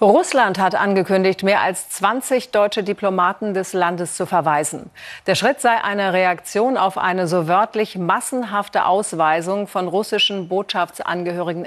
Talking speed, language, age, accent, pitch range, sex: 135 wpm, German, 40-59, German, 175-200 Hz, female